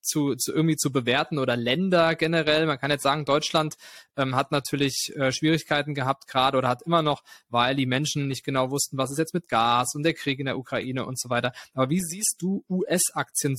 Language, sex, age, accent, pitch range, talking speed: German, male, 20-39, German, 135-165 Hz, 215 wpm